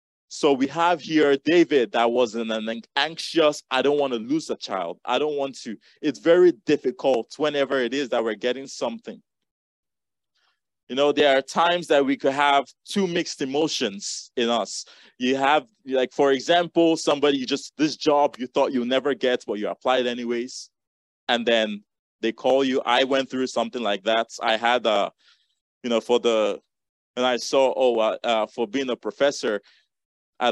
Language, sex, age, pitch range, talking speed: English, male, 20-39, 115-145 Hz, 175 wpm